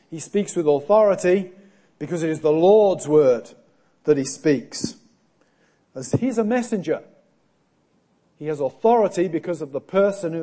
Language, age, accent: English, 40-59, British